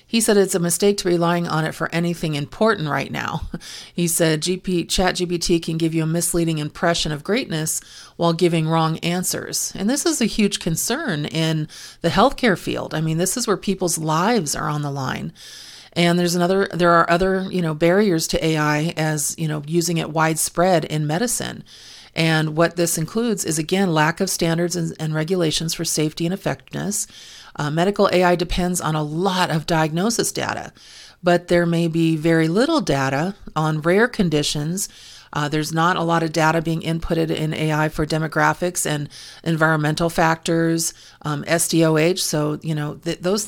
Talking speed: 175 wpm